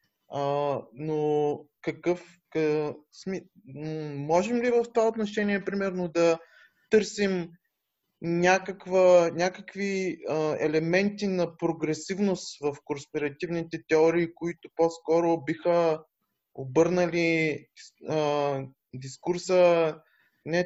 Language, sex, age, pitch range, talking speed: Bulgarian, male, 20-39, 150-185 Hz, 80 wpm